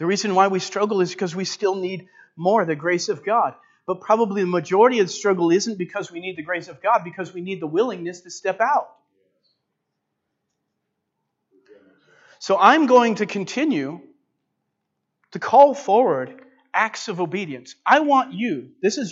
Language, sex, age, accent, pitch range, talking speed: English, male, 40-59, American, 175-235 Hz, 170 wpm